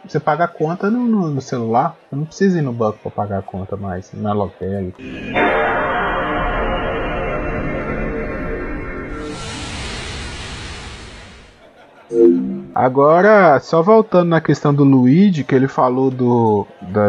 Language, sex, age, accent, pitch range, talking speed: Portuguese, male, 20-39, Brazilian, 115-165 Hz, 120 wpm